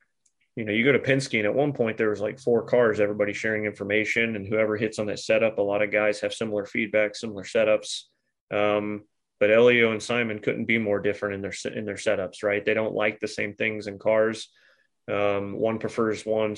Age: 30-49